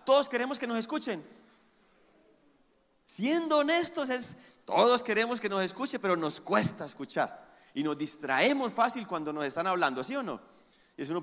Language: Spanish